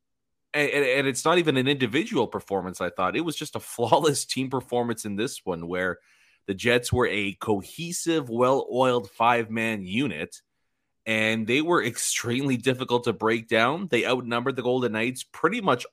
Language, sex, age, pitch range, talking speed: English, male, 30-49, 105-175 Hz, 160 wpm